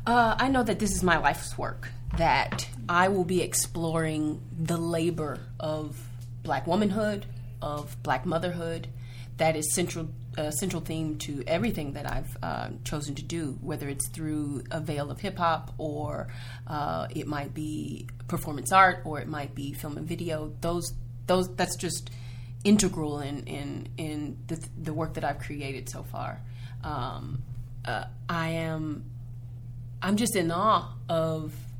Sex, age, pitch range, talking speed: female, 30-49, 120-170 Hz, 160 wpm